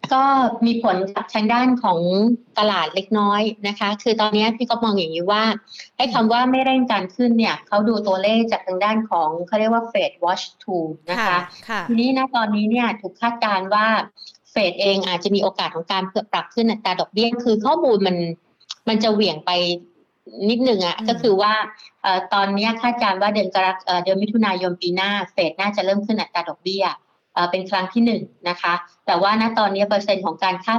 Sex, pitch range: female, 185-225 Hz